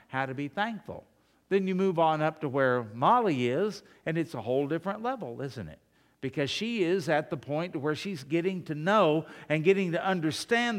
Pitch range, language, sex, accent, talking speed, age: 140-190 Hz, English, male, American, 200 wpm, 60-79